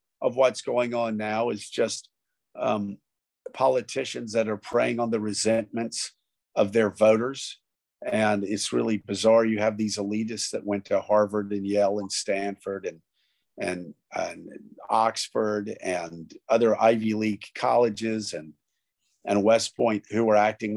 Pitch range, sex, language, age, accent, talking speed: 100-120 Hz, male, English, 50-69, American, 145 wpm